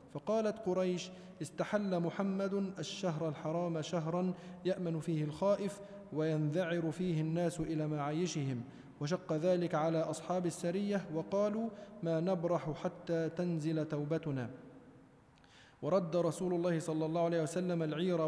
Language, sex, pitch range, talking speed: Arabic, male, 160-190 Hz, 110 wpm